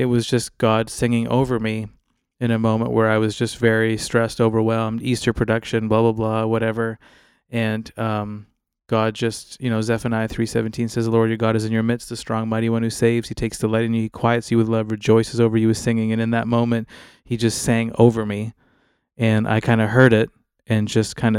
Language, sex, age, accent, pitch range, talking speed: English, male, 20-39, American, 110-120 Hz, 225 wpm